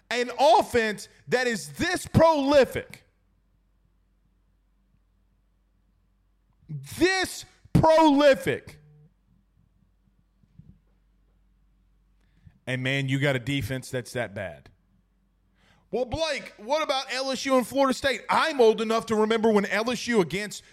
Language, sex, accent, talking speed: English, male, American, 95 wpm